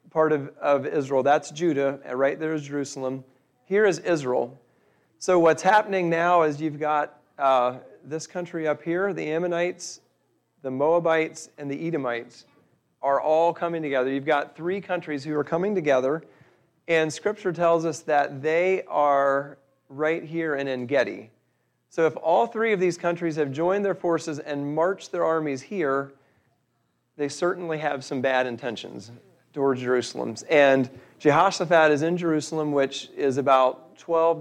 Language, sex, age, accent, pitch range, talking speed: English, male, 40-59, American, 135-165 Hz, 155 wpm